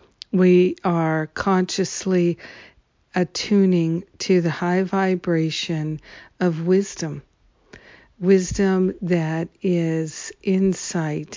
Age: 50-69